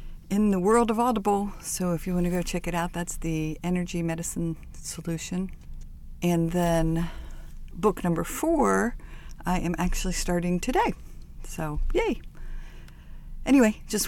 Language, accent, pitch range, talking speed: English, American, 145-180 Hz, 140 wpm